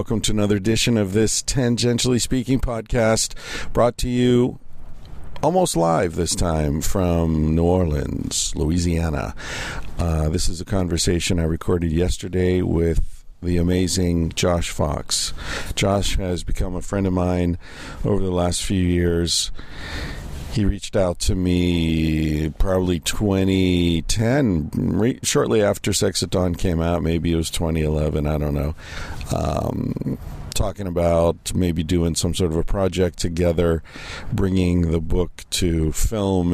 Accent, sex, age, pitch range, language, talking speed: American, male, 50-69, 85-100 Hz, English, 135 wpm